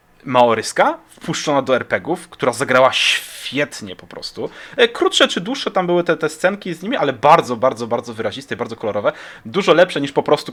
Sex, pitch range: male, 115-165 Hz